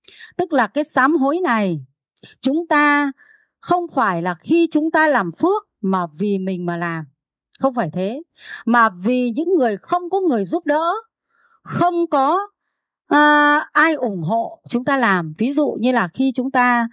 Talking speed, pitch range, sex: 170 wpm, 225-315 Hz, female